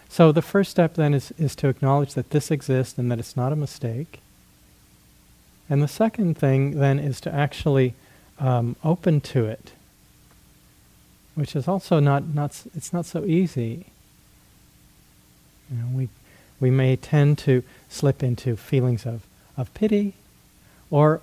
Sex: male